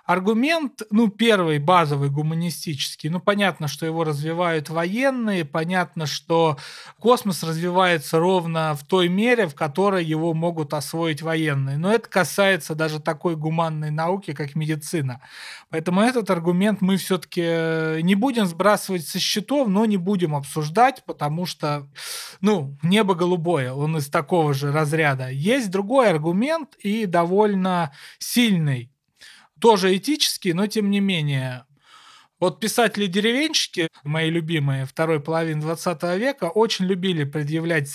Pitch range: 155-205 Hz